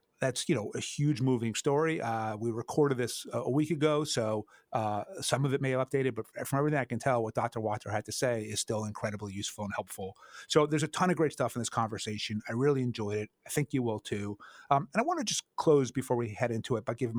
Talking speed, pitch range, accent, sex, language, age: 260 wpm, 110-140 Hz, American, male, English, 30-49